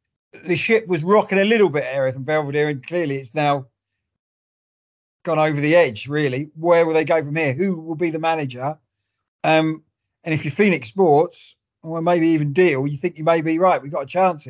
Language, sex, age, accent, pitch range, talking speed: English, male, 40-59, British, 140-175 Hz, 210 wpm